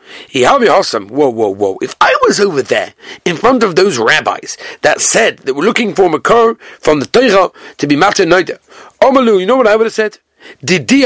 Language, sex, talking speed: English, male, 210 wpm